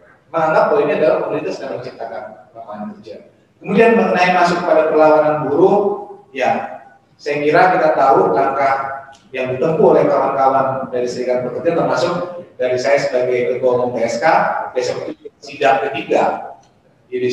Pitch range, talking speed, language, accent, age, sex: 135-195 Hz, 130 wpm, Indonesian, native, 30-49, male